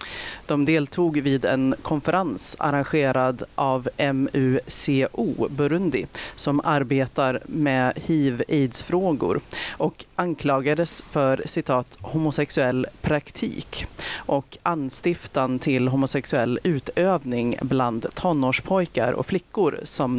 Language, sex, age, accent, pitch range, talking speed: Swedish, female, 30-49, native, 130-155 Hz, 85 wpm